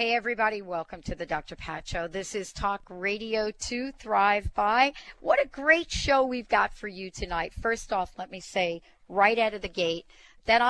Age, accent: 40-59, American